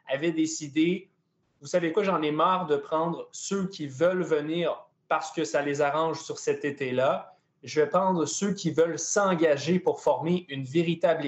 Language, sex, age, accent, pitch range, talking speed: French, male, 20-39, Canadian, 150-185 Hz, 175 wpm